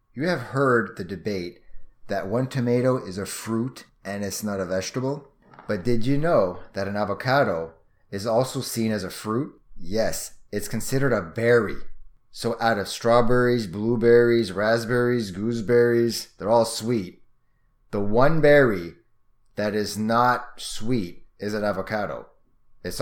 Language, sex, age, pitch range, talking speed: English, male, 30-49, 100-125 Hz, 145 wpm